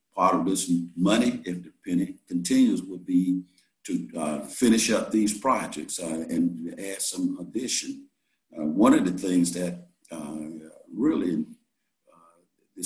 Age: 60-79